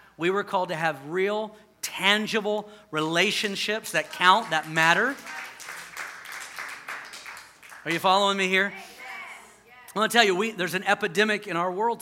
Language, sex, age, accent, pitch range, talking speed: English, male, 40-59, American, 160-210 Hz, 140 wpm